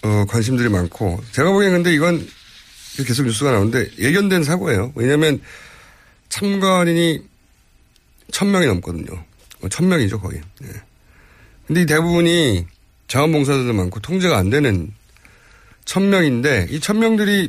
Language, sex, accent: Korean, male, native